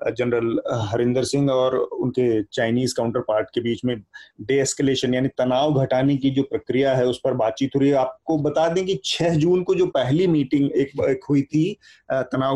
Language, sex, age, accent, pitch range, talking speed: Hindi, male, 30-49, native, 125-165 Hz, 185 wpm